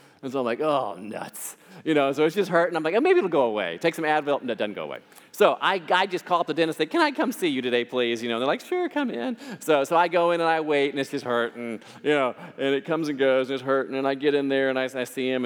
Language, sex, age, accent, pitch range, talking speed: English, male, 40-59, American, 130-190 Hz, 330 wpm